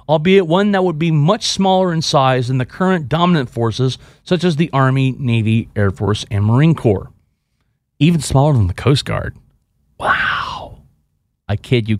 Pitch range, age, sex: 125-185 Hz, 30-49, male